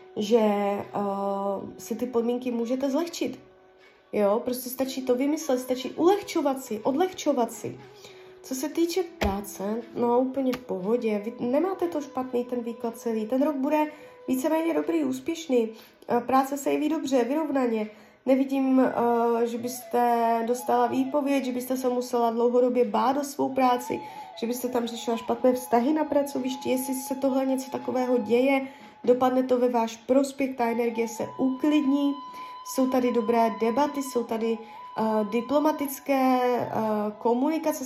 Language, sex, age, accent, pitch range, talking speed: Czech, female, 20-39, native, 235-290 Hz, 140 wpm